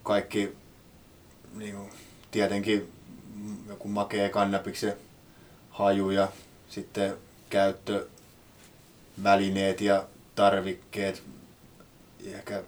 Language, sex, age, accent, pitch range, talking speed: Finnish, male, 20-39, native, 100-105 Hz, 60 wpm